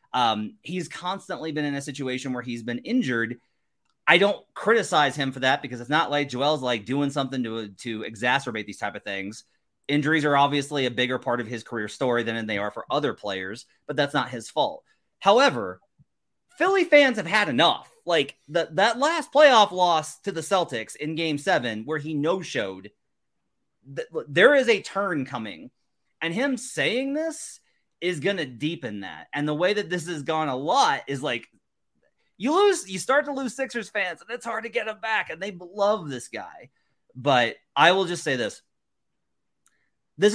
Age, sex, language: 30-49, male, English